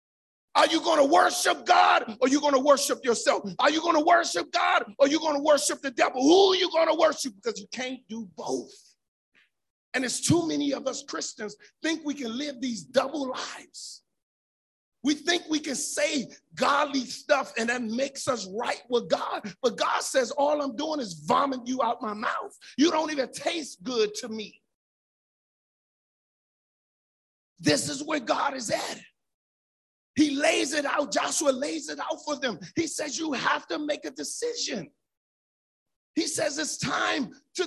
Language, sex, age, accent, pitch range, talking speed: English, male, 50-69, American, 255-315 Hz, 180 wpm